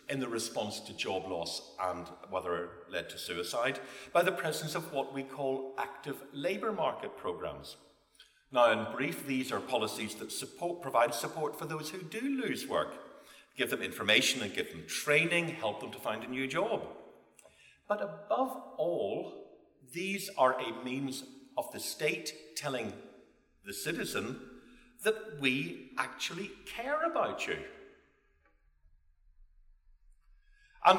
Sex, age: male, 50-69